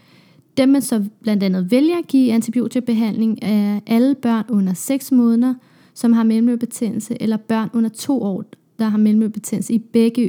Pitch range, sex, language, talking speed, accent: 210-255 Hz, female, Danish, 165 wpm, native